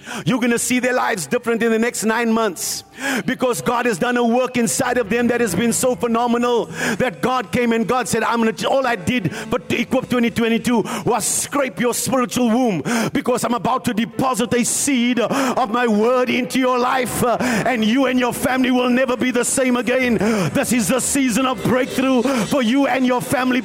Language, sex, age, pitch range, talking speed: English, male, 50-69, 230-255 Hz, 210 wpm